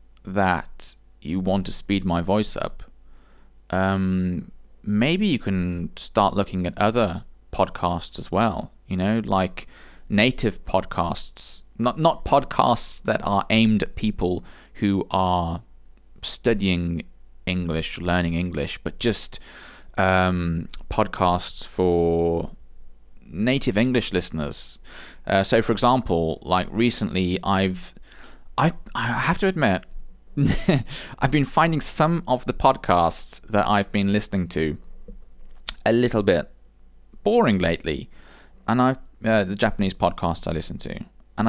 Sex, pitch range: male, 90-115 Hz